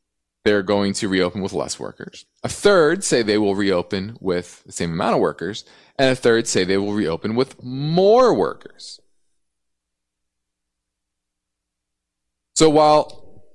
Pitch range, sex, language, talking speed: 85-135 Hz, male, English, 135 wpm